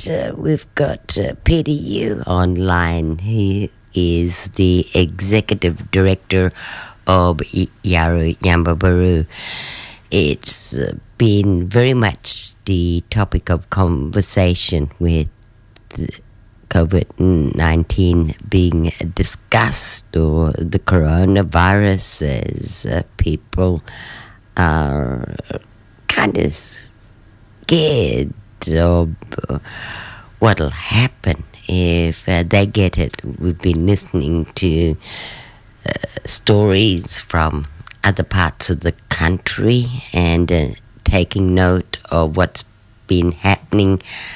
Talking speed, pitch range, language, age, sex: 90 wpm, 85-105 Hz, English, 50-69, female